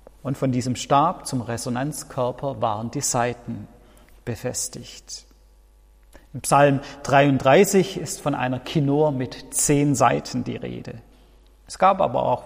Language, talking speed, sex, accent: German, 125 wpm, male, German